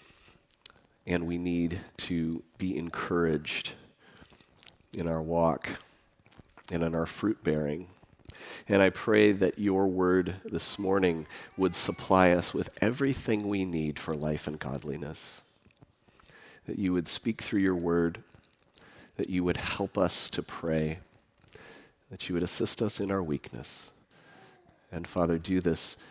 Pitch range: 85-105 Hz